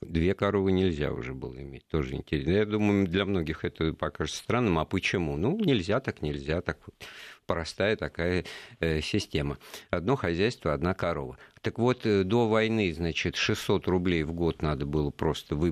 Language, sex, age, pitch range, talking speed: Russian, male, 50-69, 80-100 Hz, 155 wpm